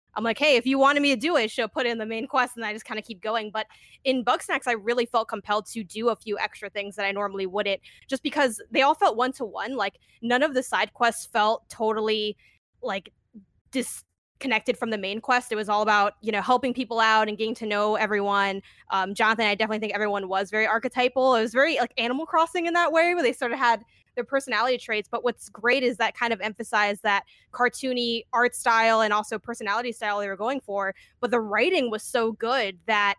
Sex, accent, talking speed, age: female, American, 230 wpm, 20-39